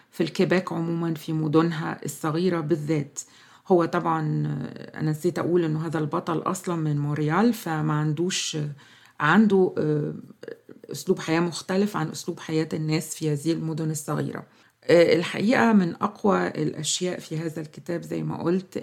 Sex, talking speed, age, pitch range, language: female, 135 wpm, 40-59, 155-185 Hz, Arabic